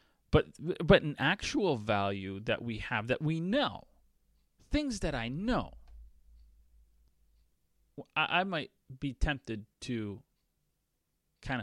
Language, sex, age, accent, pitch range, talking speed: English, male, 30-49, American, 100-130 Hz, 115 wpm